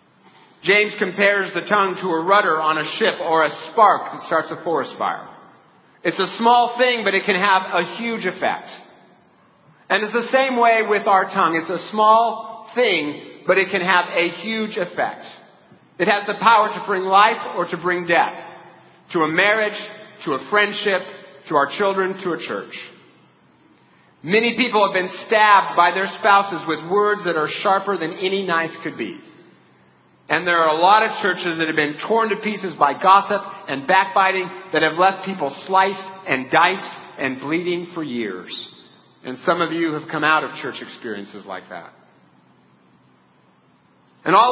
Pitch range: 165-210 Hz